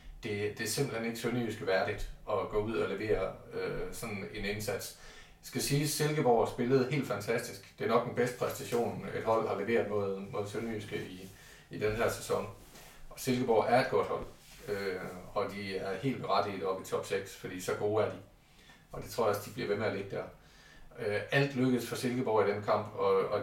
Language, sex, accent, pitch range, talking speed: Danish, male, native, 105-130 Hz, 220 wpm